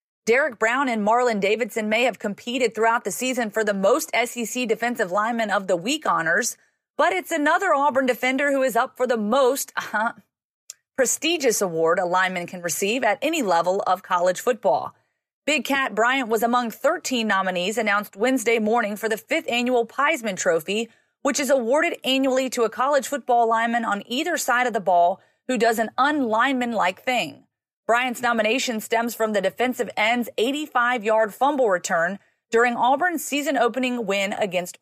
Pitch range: 220-270 Hz